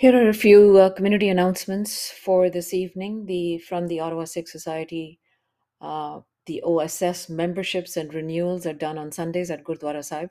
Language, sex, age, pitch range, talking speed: English, female, 50-69, 155-180 Hz, 165 wpm